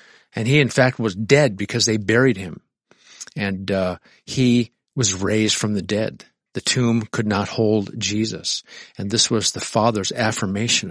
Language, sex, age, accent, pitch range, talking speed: English, male, 50-69, American, 100-120 Hz, 165 wpm